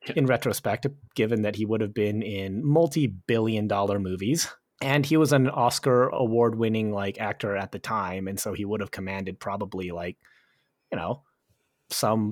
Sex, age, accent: male, 30-49, American